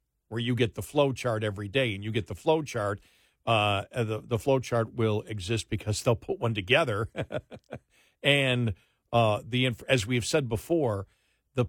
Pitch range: 110-145 Hz